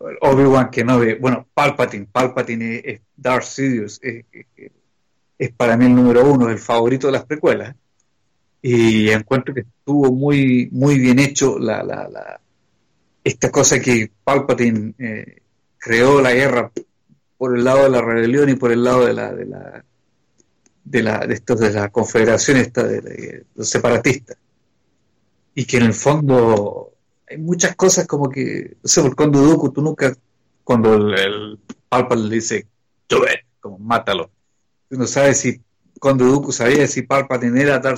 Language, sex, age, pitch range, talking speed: English, male, 50-69, 115-140 Hz, 165 wpm